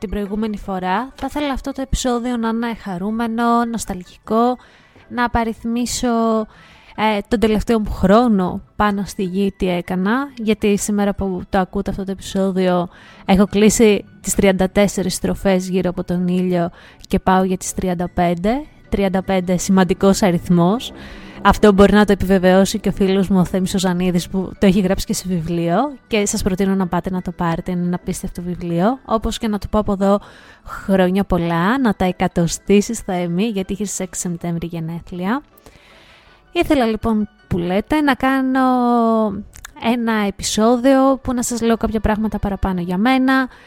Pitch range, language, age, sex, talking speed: 185-230 Hz, Greek, 20-39, female, 155 wpm